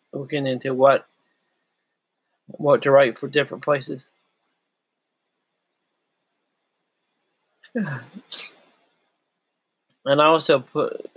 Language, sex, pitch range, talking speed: English, male, 130-150 Hz, 70 wpm